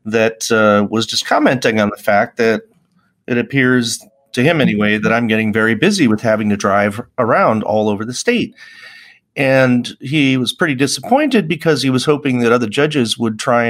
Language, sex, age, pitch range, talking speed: English, male, 40-59, 100-135 Hz, 185 wpm